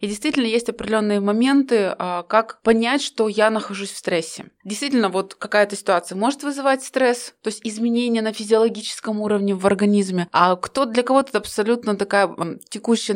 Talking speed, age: 160 wpm, 20-39